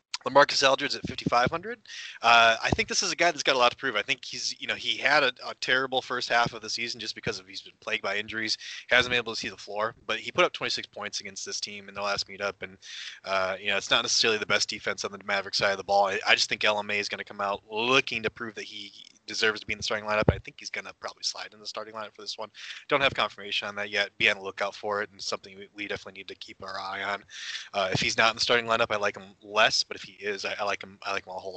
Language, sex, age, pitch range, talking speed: English, male, 20-39, 100-115 Hz, 305 wpm